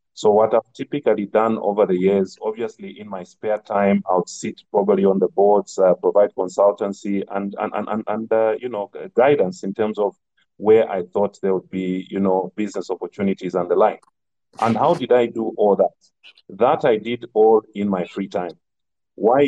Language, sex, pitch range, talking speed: English, male, 95-115 Hz, 190 wpm